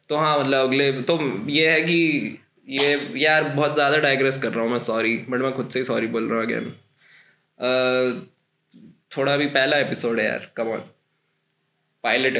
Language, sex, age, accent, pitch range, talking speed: Hindi, male, 10-29, native, 125-155 Hz, 175 wpm